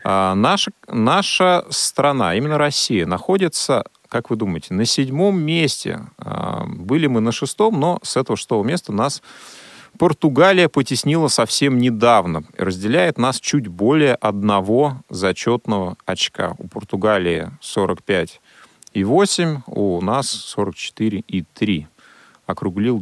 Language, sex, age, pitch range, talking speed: Russian, male, 30-49, 100-160 Hz, 105 wpm